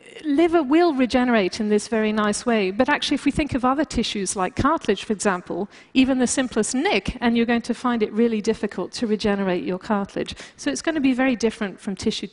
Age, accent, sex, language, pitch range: 40-59, British, female, Chinese, 210-270 Hz